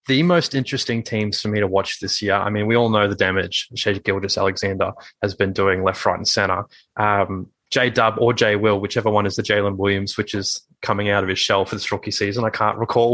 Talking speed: 230 wpm